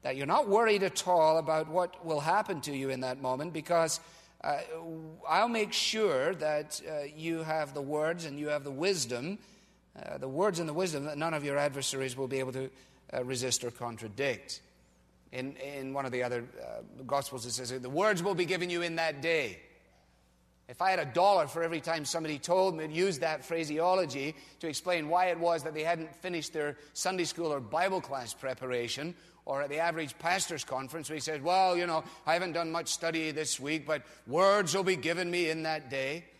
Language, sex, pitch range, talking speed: English, male, 140-185 Hz, 210 wpm